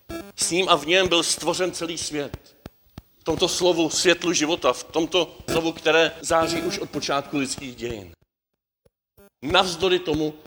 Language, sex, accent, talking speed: Czech, male, native, 150 wpm